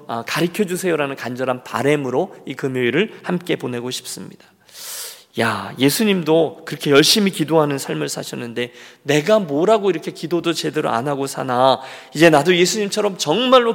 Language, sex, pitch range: Korean, male, 145-200 Hz